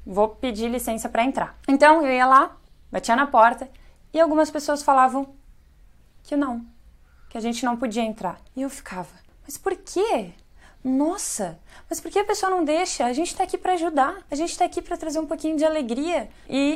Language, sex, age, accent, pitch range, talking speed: Portuguese, female, 20-39, Brazilian, 225-295 Hz, 195 wpm